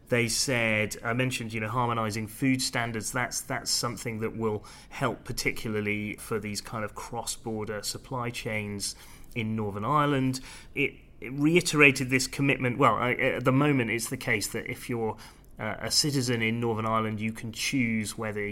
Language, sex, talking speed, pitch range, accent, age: English, male, 170 wpm, 105-125 Hz, British, 30-49